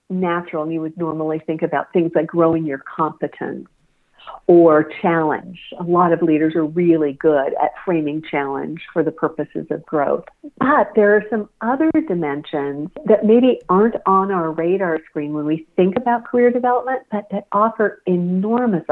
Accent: American